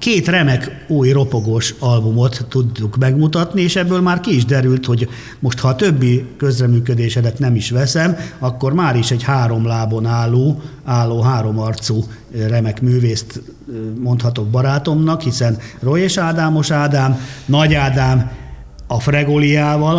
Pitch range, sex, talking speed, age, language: 110-140 Hz, male, 130 wpm, 50-69, Hungarian